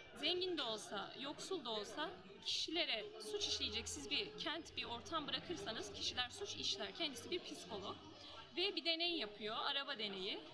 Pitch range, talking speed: 240-345 Hz, 155 wpm